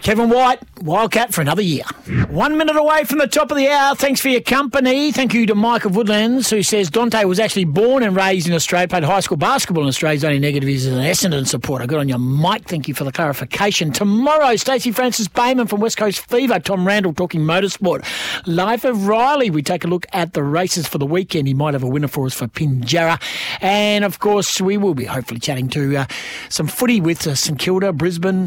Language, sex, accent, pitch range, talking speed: English, male, Australian, 160-230 Hz, 225 wpm